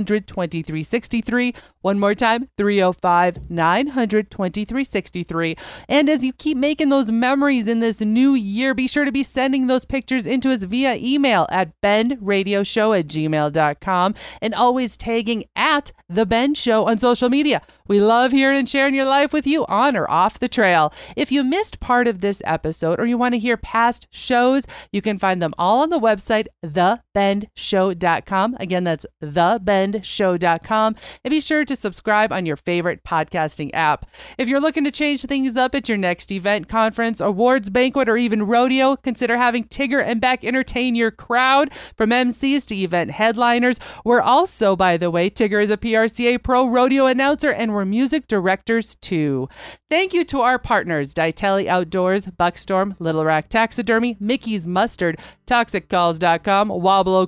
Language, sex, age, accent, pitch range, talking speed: English, female, 30-49, American, 190-255 Hz, 160 wpm